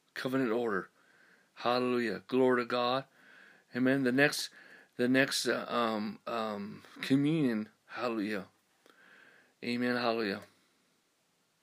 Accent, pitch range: American, 115-125 Hz